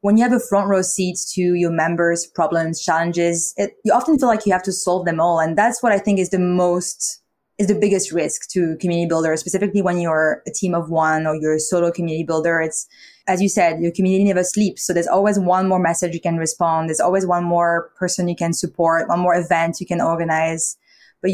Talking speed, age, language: 230 wpm, 20-39, English